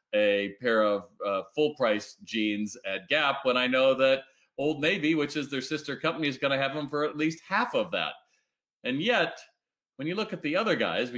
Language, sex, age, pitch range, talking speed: English, male, 40-59, 110-140 Hz, 220 wpm